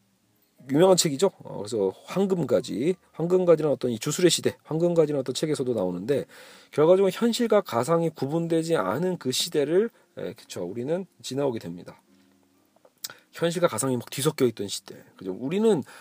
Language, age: Korean, 40-59